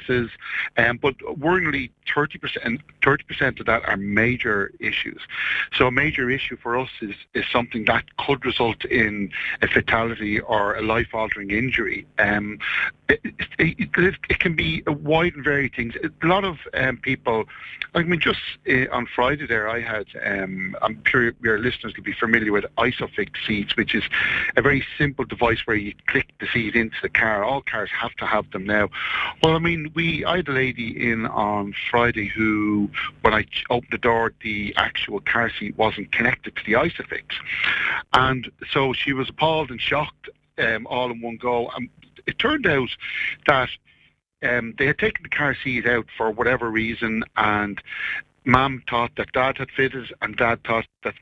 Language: English